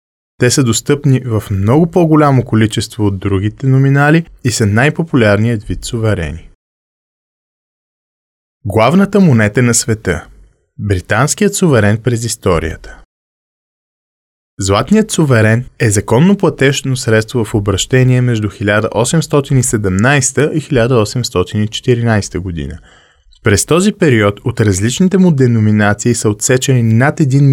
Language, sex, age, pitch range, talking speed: Bulgarian, male, 20-39, 105-140 Hz, 100 wpm